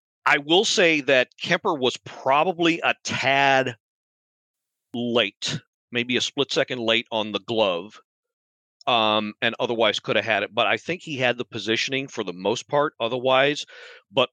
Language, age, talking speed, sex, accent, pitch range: English, 40-59, 160 wpm, male, American, 105-135 Hz